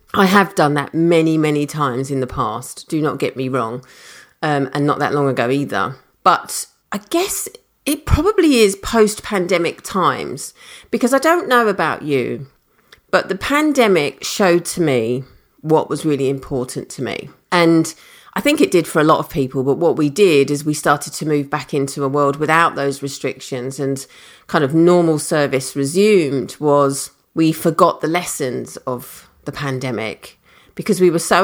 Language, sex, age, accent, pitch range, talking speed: English, female, 40-59, British, 140-175 Hz, 175 wpm